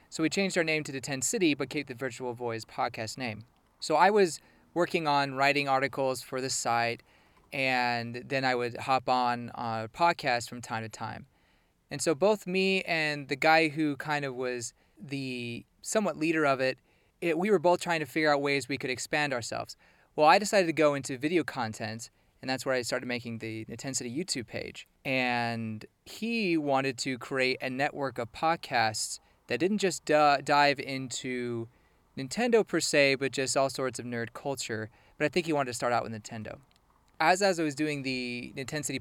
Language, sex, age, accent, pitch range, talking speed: English, male, 30-49, American, 120-155 Hz, 200 wpm